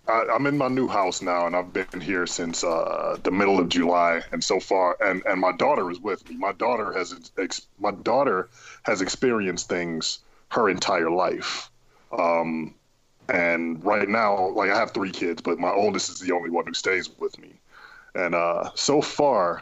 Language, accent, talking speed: English, American, 180 wpm